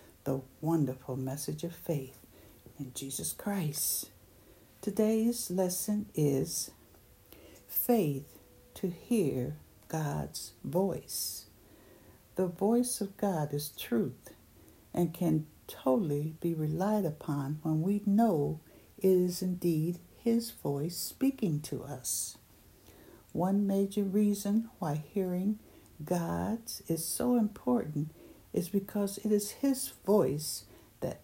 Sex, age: female, 60-79